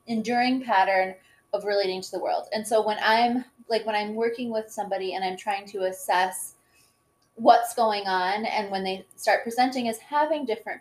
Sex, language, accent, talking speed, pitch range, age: female, English, American, 185 wpm, 190-230 Hz, 20-39